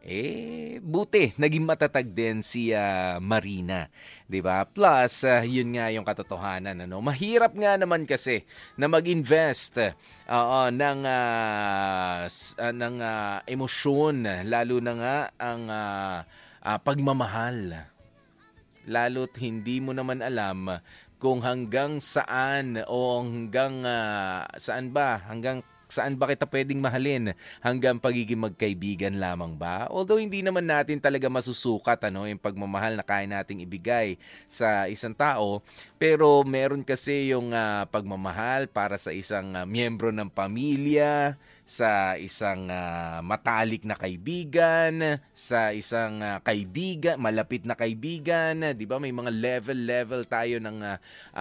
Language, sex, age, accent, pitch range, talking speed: English, male, 20-39, Filipino, 100-135 Hz, 130 wpm